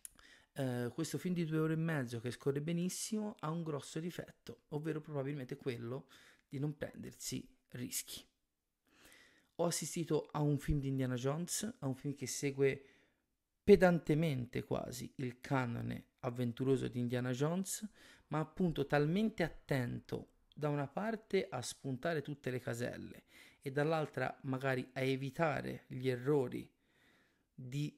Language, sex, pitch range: Italian, male, 130-165 Hz